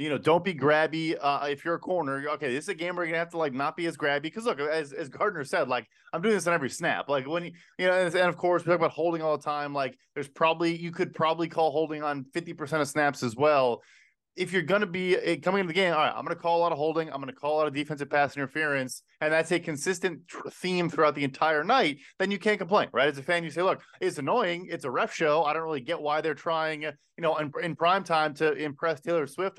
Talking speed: 285 wpm